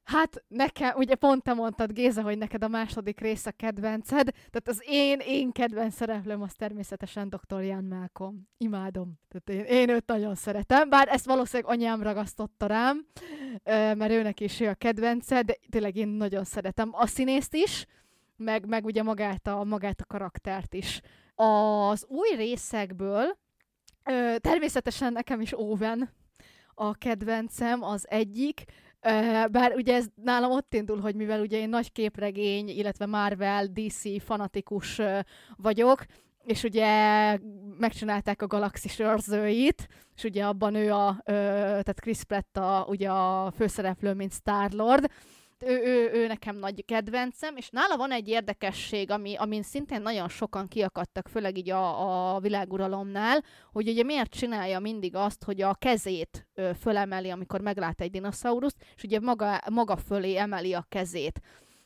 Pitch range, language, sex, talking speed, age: 200-235 Hz, Hungarian, female, 150 wpm, 20-39